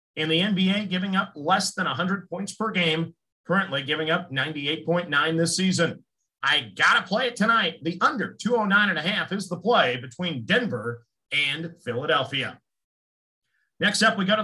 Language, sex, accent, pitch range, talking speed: English, male, American, 165-205 Hz, 165 wpm